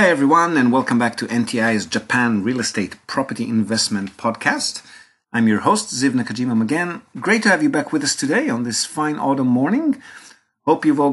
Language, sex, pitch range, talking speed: English, male, 105-120 Hz, 190 wpm